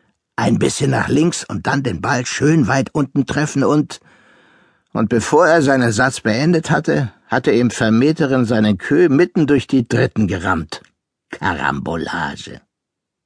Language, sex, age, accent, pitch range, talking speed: German, male, 60-79, German, 110-145 Hz, 140 wpm